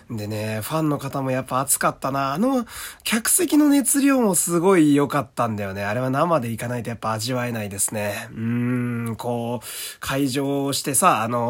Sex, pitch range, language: male, 110-155 Hz, Japanese